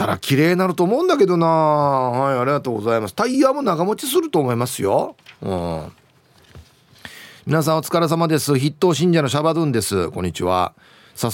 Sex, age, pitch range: male, 40-59, 125-185 Hz